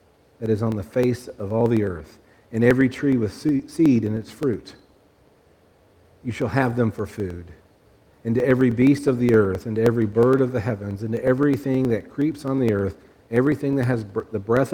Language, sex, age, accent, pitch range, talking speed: English, male, 50-69, American, 105-135 Hz, 210 wpm